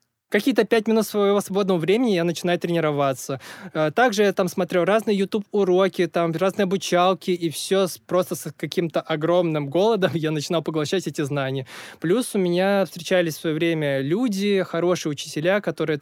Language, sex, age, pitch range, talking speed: Russian, male, 20-39, 160-190 Hz, 155 wpm